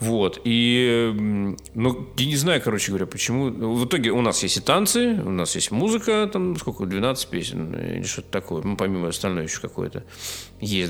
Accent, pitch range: native, 90-120 Hz